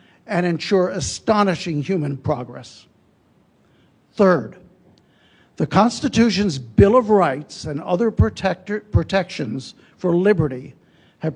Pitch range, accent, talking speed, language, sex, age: 160-205 Hz, American, 90 wpm, English, male, 60-79